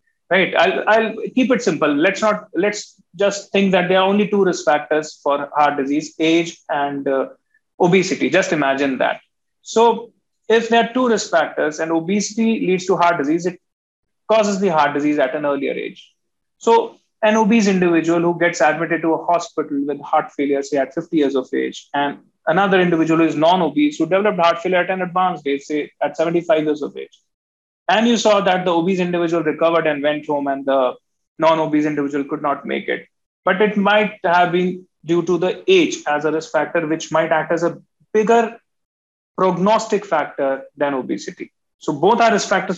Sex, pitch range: male, 155-205 Hz